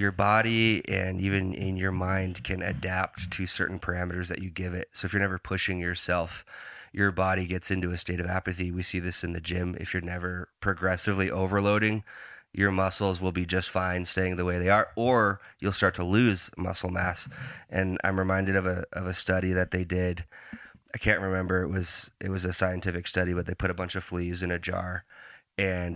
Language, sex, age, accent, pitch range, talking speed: English, male, 20-39, American, 90-100 Hz, 210 wpm